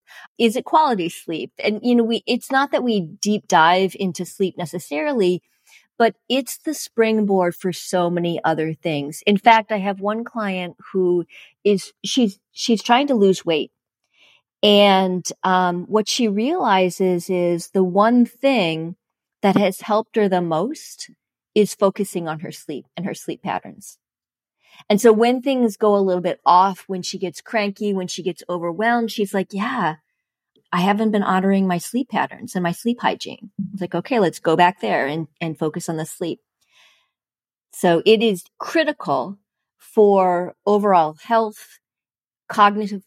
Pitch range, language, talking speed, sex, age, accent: 175-220 Hz, English, 160 wpm, female, 40-59, American